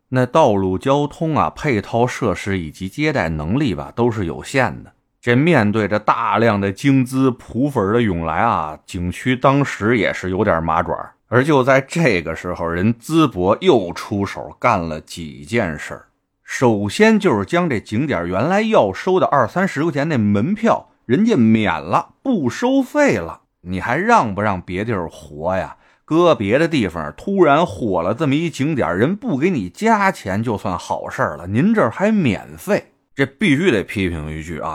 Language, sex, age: Chinese, male, 30-49